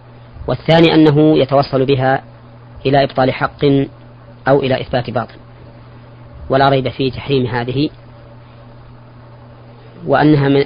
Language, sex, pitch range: Arabic, female, 120-140 Hz